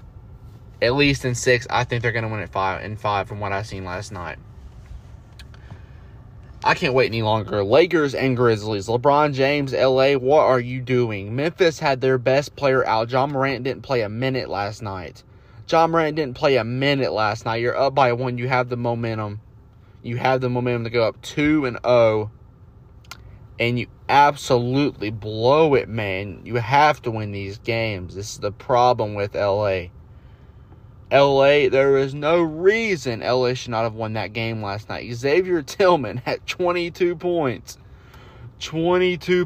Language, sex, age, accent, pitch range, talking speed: English, male, 20-39, American, 105-130 Hz, 175 wpm